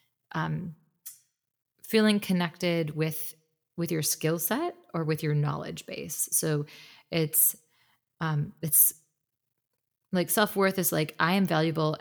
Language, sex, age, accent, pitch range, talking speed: English, female, 20-39, American, 155-175 Hz, 125 wpm